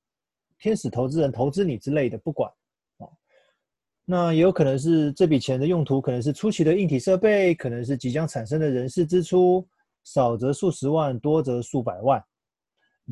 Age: 30-49